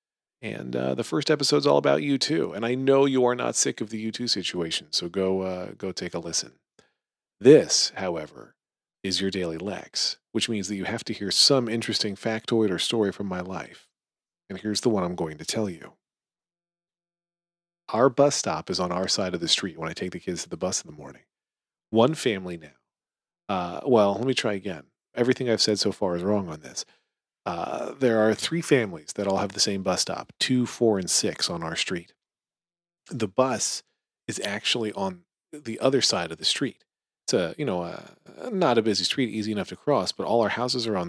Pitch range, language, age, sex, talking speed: 100-135 Hz, English, 40-59, male, 210 wpm